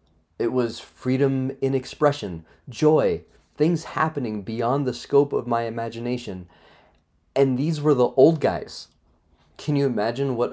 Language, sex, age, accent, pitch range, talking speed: English, male, 30-49, American, 85-130 Hz, 135 wpm